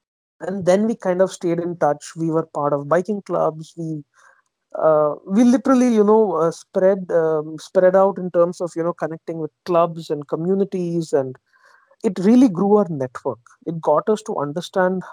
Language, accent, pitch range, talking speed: Hindi, native, 160-205 Hz, 185 wpm